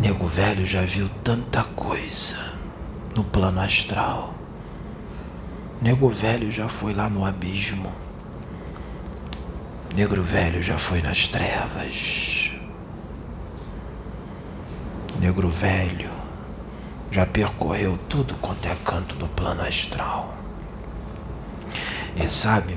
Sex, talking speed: male, 90 wpm